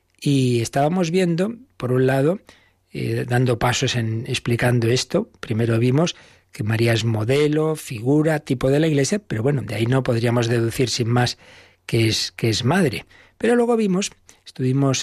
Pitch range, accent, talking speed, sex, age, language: 120-140 Hz, Spanish, 160 wpm, male, 40-59, Spanish